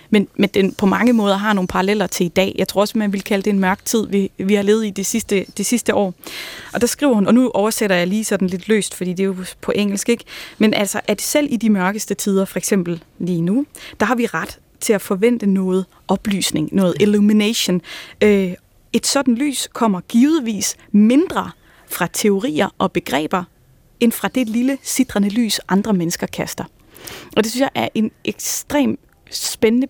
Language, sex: Danish, female